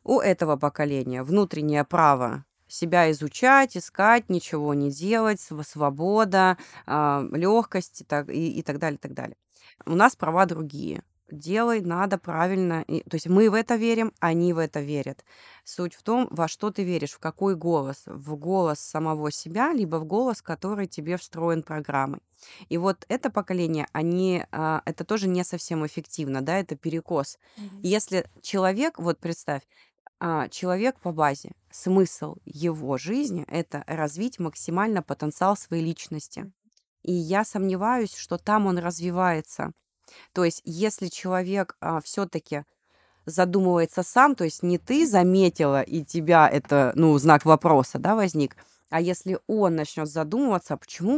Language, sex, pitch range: Russian, female, 155-195 Hz